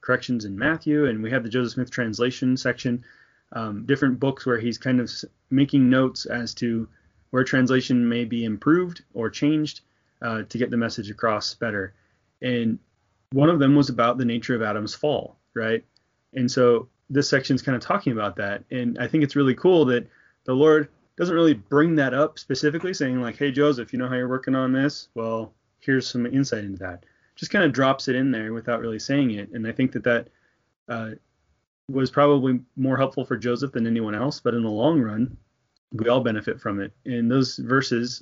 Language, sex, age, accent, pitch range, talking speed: English, male, 20-39, American, 115-140 Hz, 205 wpm